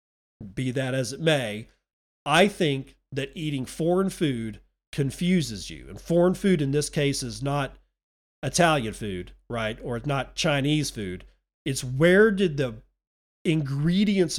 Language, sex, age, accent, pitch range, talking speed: English, male, 40-59, American, 135-190 Hz, 140 wpm